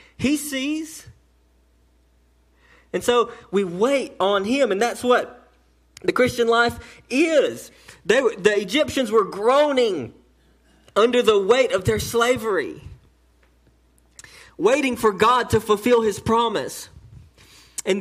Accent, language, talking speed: American, English, 115 wpm